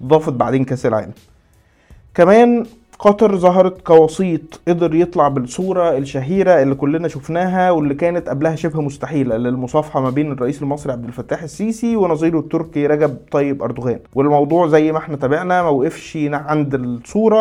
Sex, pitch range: male, 135-175 Hz